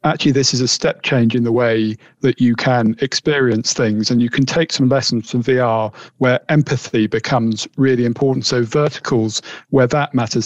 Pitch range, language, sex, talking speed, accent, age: 120-145 Hz, English, male, 185 wpm, British, 40-59